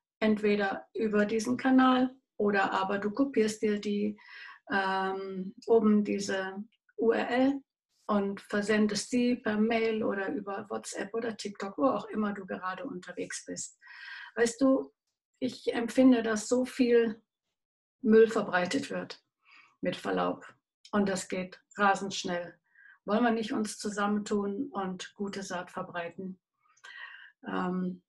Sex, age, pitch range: female, 60-79, 190-245 Hz